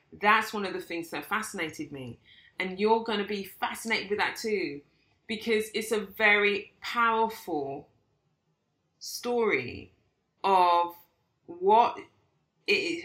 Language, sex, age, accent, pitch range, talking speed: English, female, 30-49, British, 165-210 Hz, 120 wpm